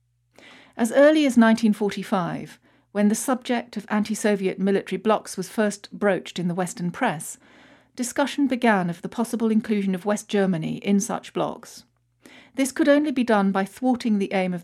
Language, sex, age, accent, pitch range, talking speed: English, female, 40-59, British, 185-235 Hz, 165 wpm